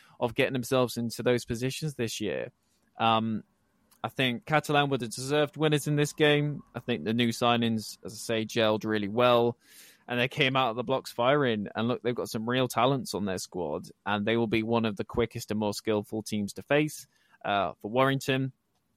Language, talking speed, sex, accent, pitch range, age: English, 205 wpm, male, British, 110-130 Hz, 20-39